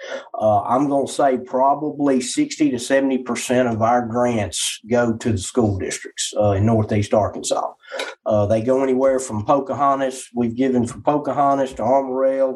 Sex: male